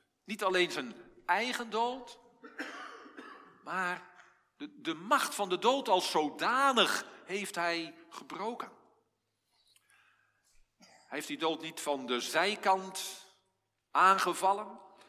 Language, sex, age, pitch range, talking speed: Dutch, male, 50-69, 165-215 Hz, 105 wpm